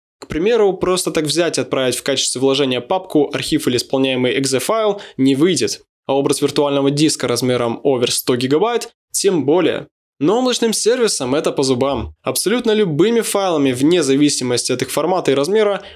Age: 20-39